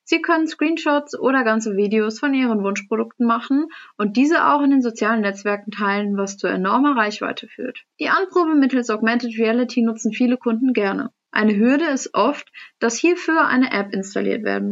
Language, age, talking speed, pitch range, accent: German, 20-39, 170 wpm, 210-275 Hz, German